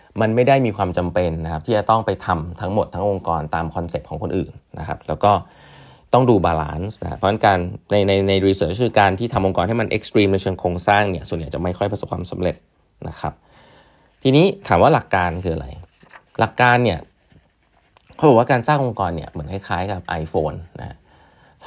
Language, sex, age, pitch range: Thai, male, 20-39, 90-115 Hz